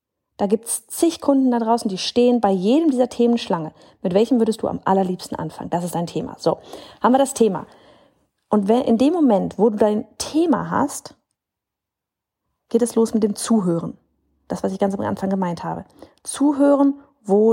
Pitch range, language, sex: 200-255 Hz, German, female